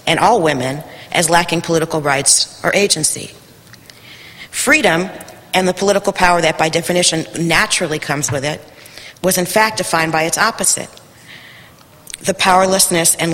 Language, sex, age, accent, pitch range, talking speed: English, female, 40-59, American, 155-190 Hz, 140 wpm